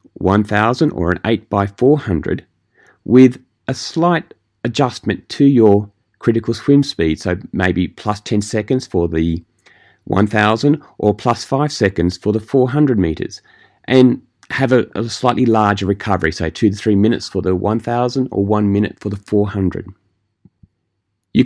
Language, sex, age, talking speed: English, male, 30-49, 145 wpm